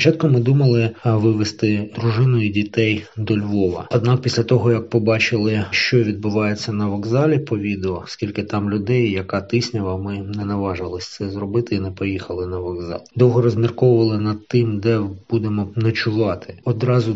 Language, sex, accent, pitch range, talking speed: Ukrainian, male, native, 105-115 Hz, 150 wpm